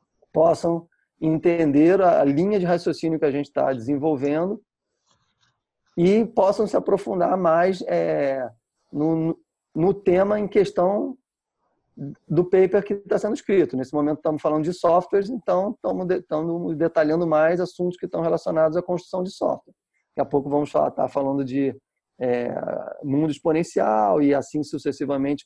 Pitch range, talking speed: 140-185 Hz, 145 wpm